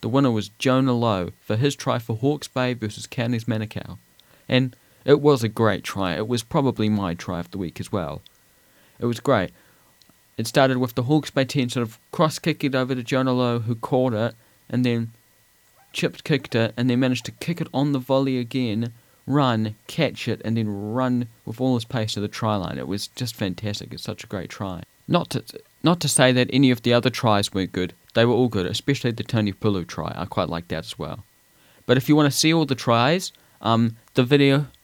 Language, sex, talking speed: English, male, 220 wpm